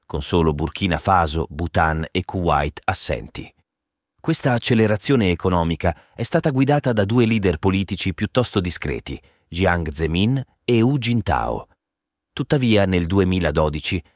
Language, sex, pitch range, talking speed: Italian, male, 85-120 Hz, 120 wpm